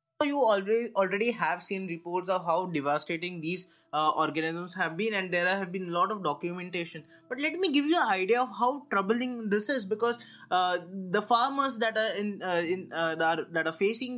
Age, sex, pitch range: 20-39, male, 180-235 Hz